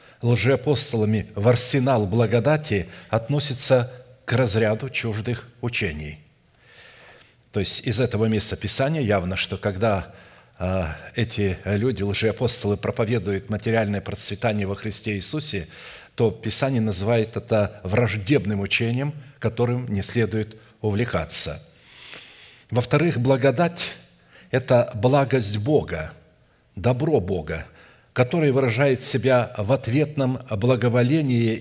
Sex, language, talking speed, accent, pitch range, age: male, Russian, 95 wpm, native, 110-130 Hz, 60-79